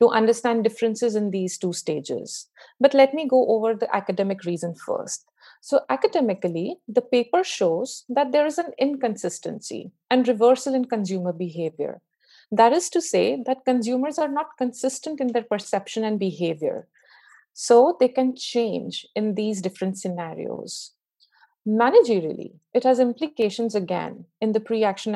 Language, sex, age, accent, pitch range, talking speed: English, female, 50-69, Indian, 215-280 Hz, 145 wpm